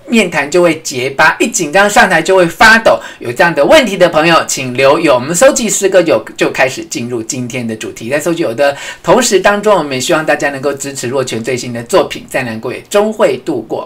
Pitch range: 130-220 Hz